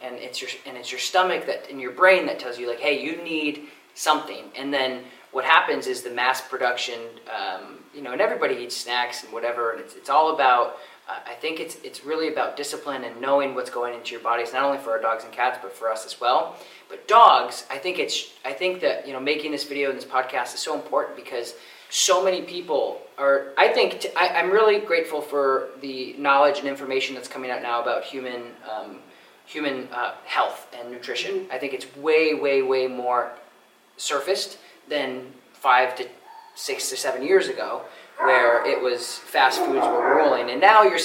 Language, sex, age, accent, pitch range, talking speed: English, male, 20-39, American, 125-165 Hz, 210 wpm